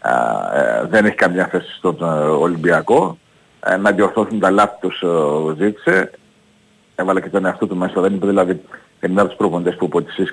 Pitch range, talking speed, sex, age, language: 85-110 Hz, 165 wpm, male, 50-69, Greek